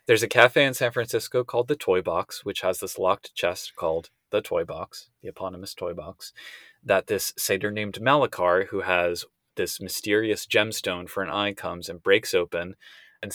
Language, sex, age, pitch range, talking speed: English, male, 20-39, 95-135 Hz, 185 wpm